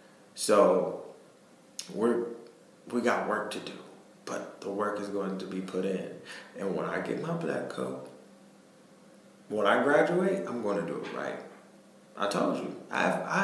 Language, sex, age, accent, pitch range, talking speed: English, male, 20-39, American, 100-125 Hz, 170 wpm